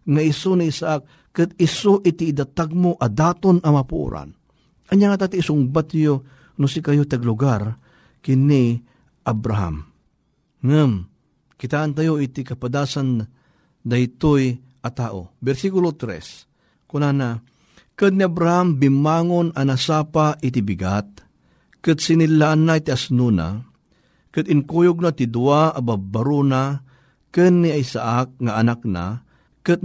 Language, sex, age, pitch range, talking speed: Filipino, male, 50-69, 125-160 Hz, 115 wpm